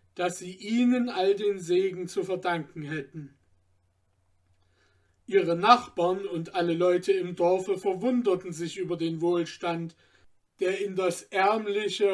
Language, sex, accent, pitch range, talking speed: German, male, German, 170-195 Hz, 125 wpm